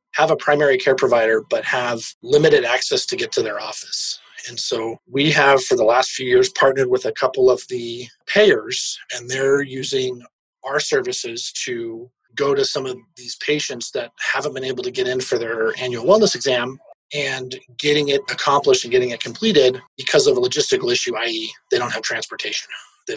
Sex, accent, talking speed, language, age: male, American, 190 wpm, English, 30-49